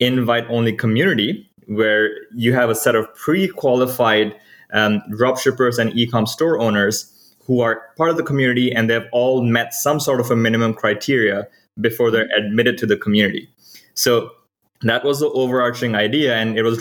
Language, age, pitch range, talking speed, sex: English, 20-39, 105-120 Hz, 160 wpm, male